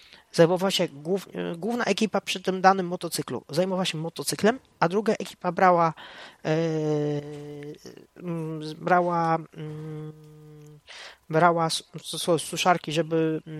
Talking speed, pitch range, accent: 90 wpm, 155-195 Hz, native